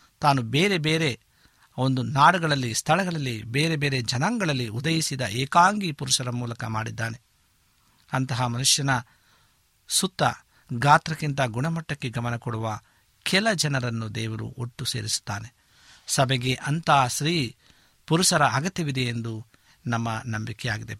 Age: 50-69